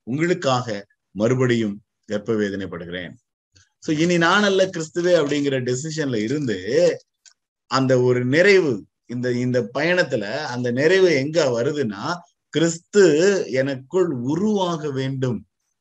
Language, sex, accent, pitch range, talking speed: Tamil, male, native, 120-165 Hz, 85 wpm